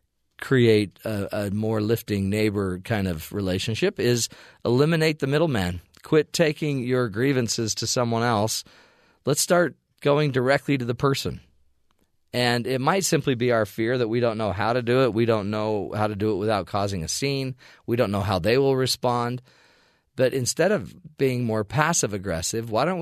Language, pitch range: English, 105-140 Hz